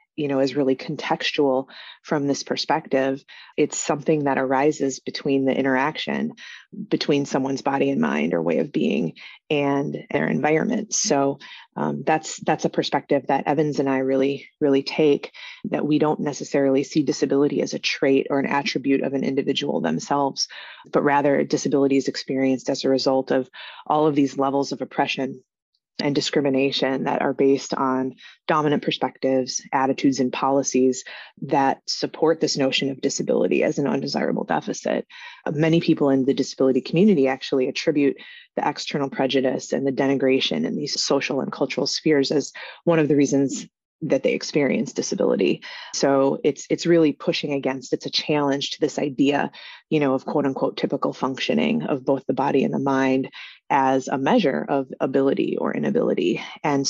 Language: English